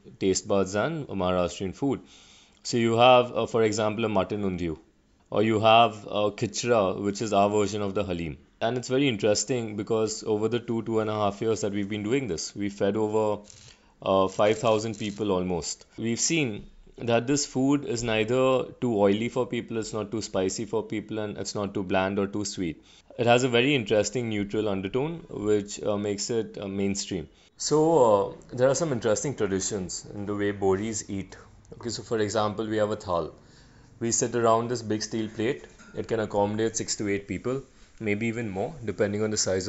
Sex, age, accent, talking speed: male, 30-49, Indian, 195 wpm